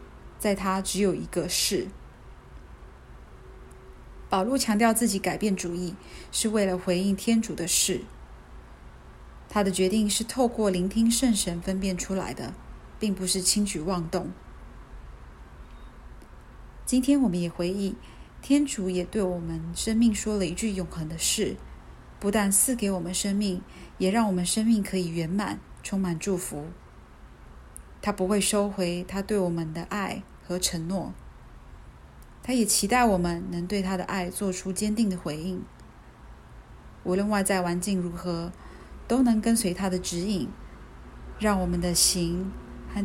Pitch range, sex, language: 165-205 Hz, female, Chinese